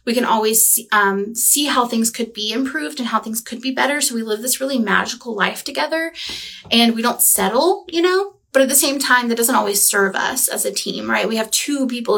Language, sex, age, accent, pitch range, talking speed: English, female, 20-39, American, 210-265 Hz, 235 wpm